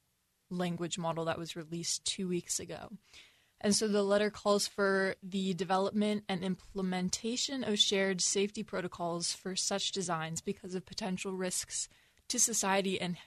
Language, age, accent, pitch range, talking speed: English, 20-39, American, 175-205 Hz, 145 wpm